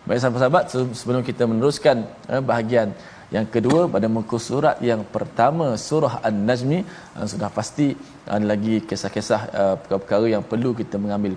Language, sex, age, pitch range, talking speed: Malayalam, male, 20-39, 110-145 Hz, 155 wpm